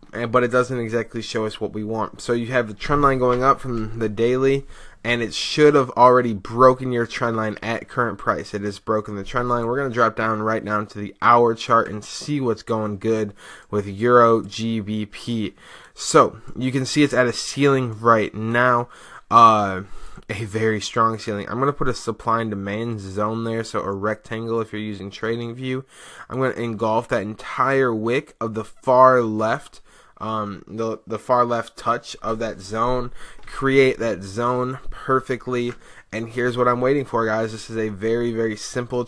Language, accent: English, American